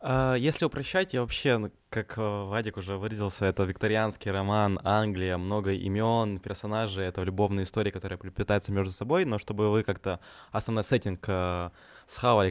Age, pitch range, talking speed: 20-39, 100-120 Hz, 140 wpm